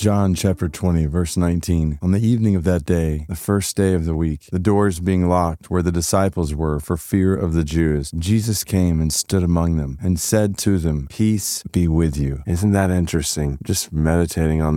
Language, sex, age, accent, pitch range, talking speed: English, male, 30-49, American, 85-105 Hz, 205 wpm